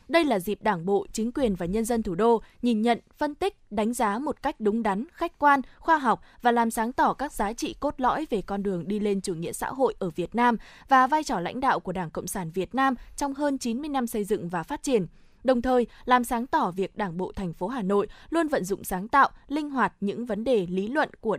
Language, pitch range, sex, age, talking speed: Vietnamese, 195-265 Hz, female, 20-39, 260 wpm